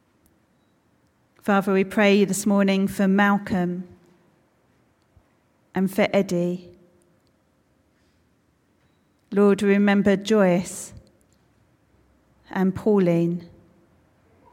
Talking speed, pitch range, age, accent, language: 60 wpm, 180-200 Hz, 40-59, British, English